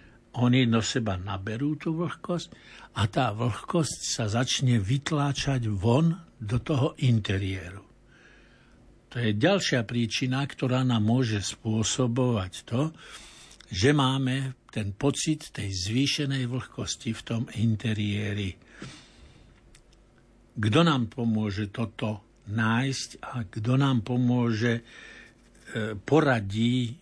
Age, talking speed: 60-79, 100 wpm